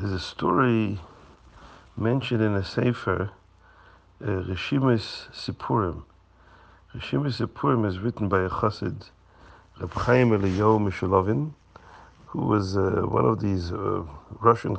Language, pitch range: English, 95-115 Hz